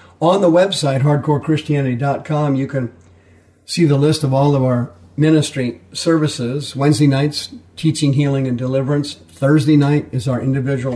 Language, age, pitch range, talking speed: English, 50-69, 120-145 Hz, 140 wpm